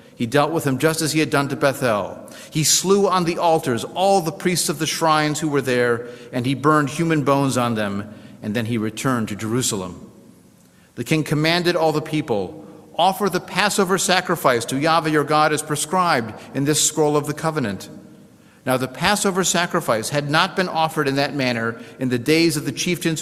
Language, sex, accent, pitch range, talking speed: English, male, American, 125-160 Hz, 200 wpm